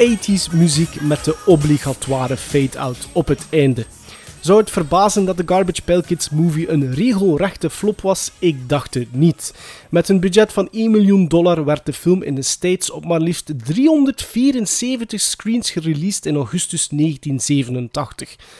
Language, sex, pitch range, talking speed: Dutch, male, 140-195 Hz, 155 wpm